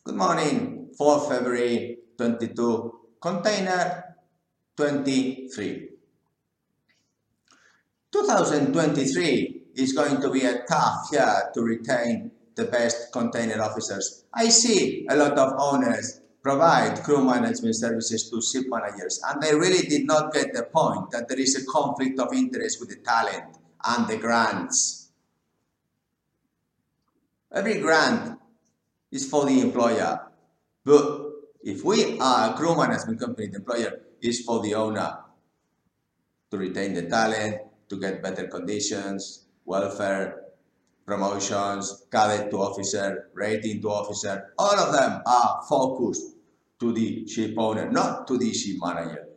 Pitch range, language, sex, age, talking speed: 110-160 Hz, English, male, 50-69, 130 wpm